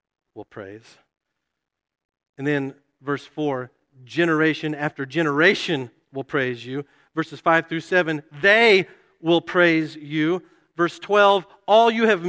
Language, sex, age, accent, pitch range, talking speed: English, male, 50-69, American, 125-165 Hz, 120 wpm